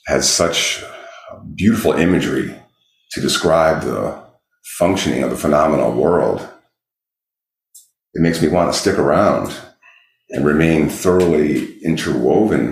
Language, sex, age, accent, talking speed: English, male, 40-59, American, 110 wpm